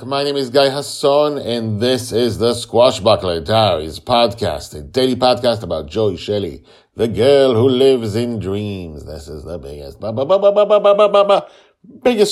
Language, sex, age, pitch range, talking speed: English, male, 50-69, 80-115 Hz, 140 wpm